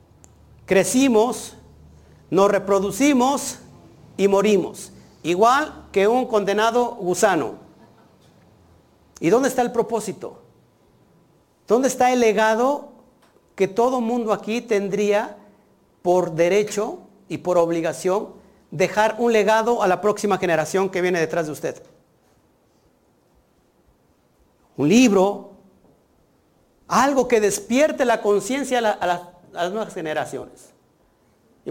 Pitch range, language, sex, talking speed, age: 180-230 Hz, Spanish, male, 110 wpm, 50-69